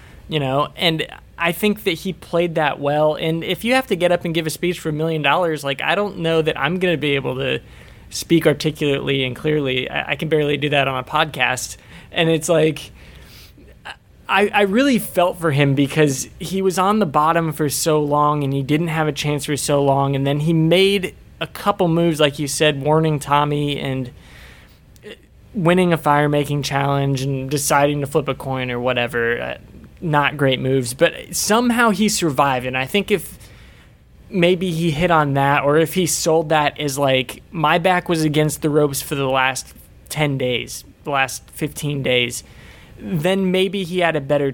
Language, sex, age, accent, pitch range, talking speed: English, male, 20-39, American, 140-170 Hz, 195 wpm